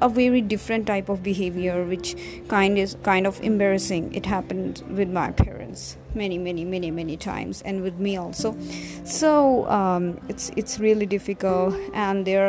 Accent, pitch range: Indian, 175-210 Hz